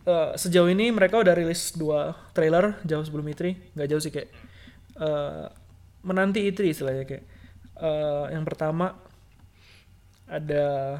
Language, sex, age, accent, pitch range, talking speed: Indonesian, male, 20-39, native, 110-170 Hz, 135 wpm